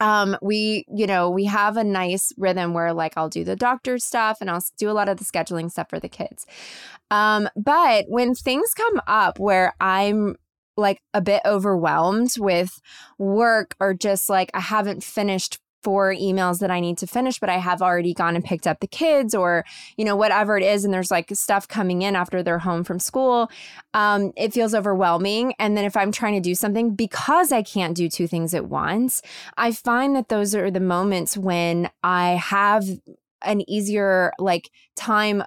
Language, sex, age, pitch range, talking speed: English, female, 20-39, 185-225 Hz, 195 wpm